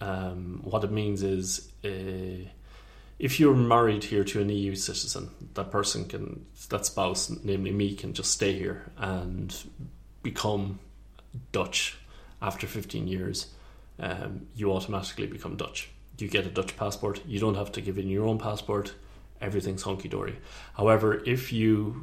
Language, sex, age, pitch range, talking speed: English, male, 30-49, 95-105 Hz, 150 wpm